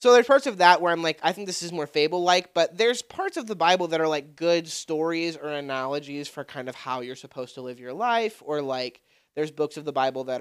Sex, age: male, 20-39